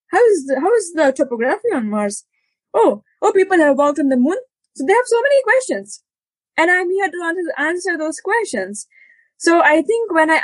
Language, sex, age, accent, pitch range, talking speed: English, female, 20-39, Indian, 240-310 Hz, 200 wpm